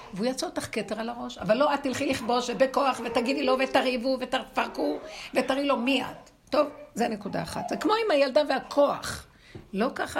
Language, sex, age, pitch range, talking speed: Hebrew, female, 60-79, 205-265 Hz, 185 wpm